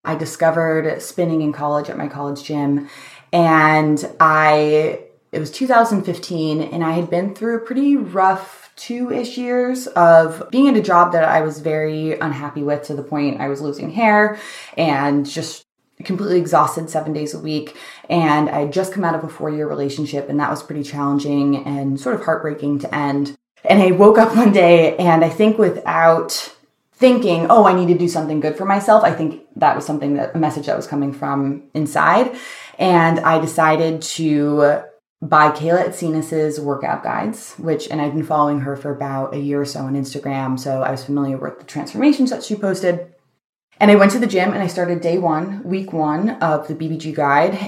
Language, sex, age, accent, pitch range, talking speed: English, female, 20-39, American, 145-180 Hz, 195 wpm